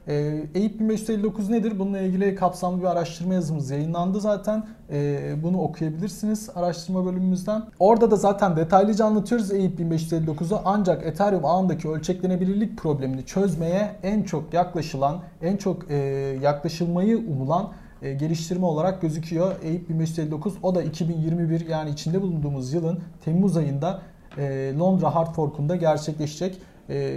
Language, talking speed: Turkish, 130 wpm